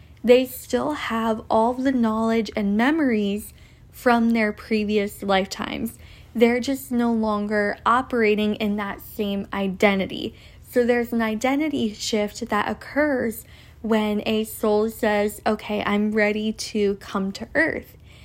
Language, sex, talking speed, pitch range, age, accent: English, female, 130 wpm, 210-240 Hz, 10-29, American